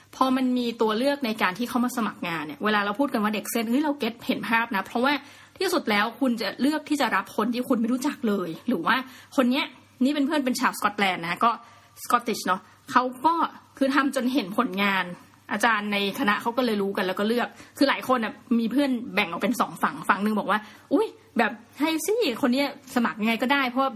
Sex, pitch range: female, 205-265 Hz